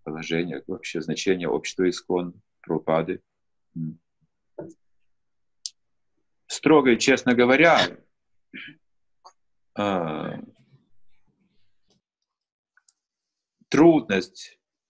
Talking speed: 45 wpm